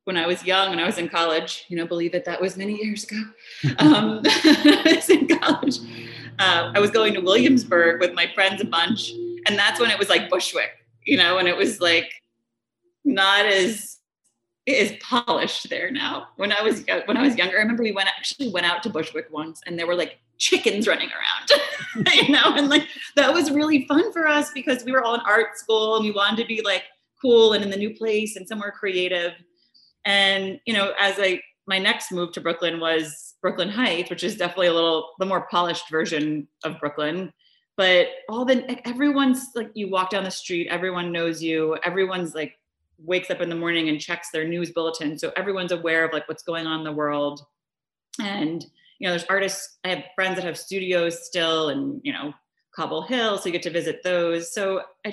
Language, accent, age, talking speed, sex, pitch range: English, American, 30-49, 210 wpm, female, 170-225 Hz